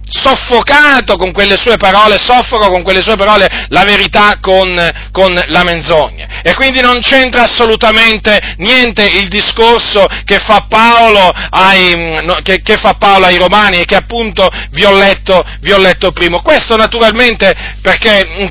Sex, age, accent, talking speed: male, 40-59, native, 135 wpm